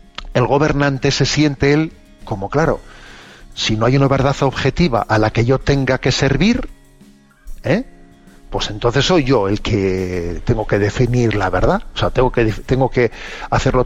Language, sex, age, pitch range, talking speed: Spanish, male, 50-69, 120-150 Hz, 170 wpm